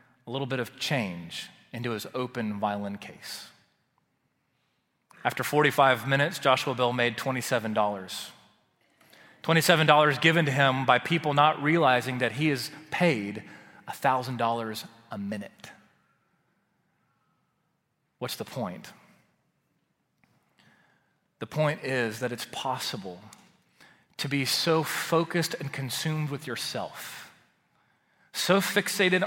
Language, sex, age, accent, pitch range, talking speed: English, male, 30-49, American, 120-165 Hz, 105 wpm